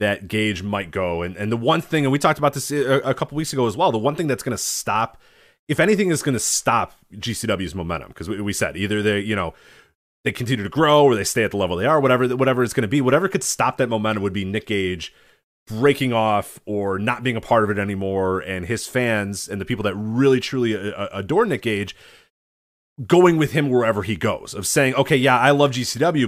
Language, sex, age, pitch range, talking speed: English, male, 30-49, 100-130 Hz, 245 wpm